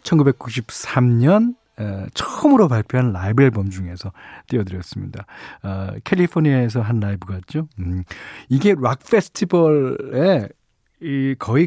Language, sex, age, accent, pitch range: Korean, male, 40-59, native, 110-160 Hz